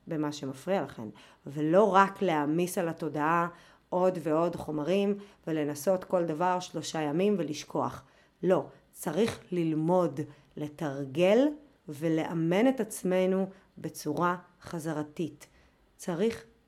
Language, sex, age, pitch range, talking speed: Hebrew, female, 30-49, 160-215 Hz, 95 wpm